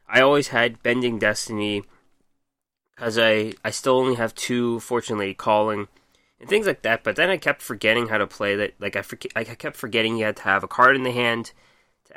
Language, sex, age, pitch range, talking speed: English, male, 20-39, 105-130 Hz, 205 wpm